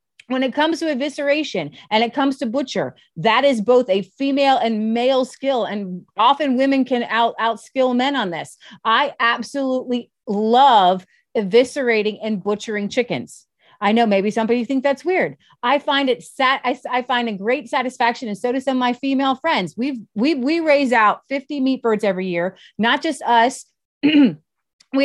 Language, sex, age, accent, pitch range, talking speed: English, female, 30-49, American, 230-285 Hz, 175 wpm